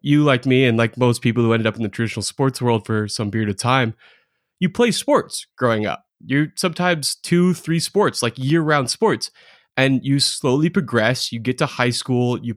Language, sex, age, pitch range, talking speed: English, male, 20-39, 125-180 Hz, 205 wpm